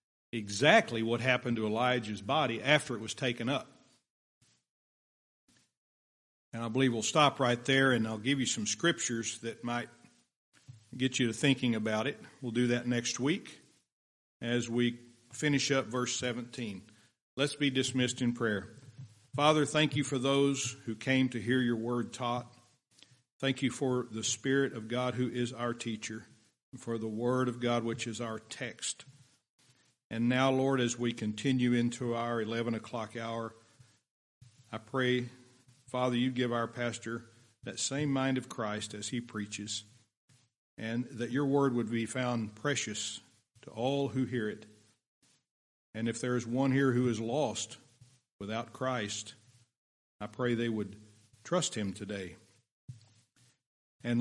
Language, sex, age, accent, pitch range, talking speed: English, male, 50-69, American, 115-130 Hz, 155 wpm